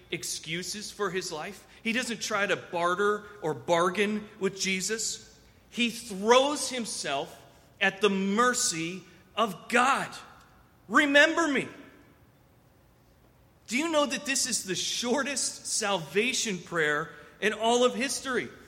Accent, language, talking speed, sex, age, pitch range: American, English, 120 wpm, male, 40-59, 185-235 Hz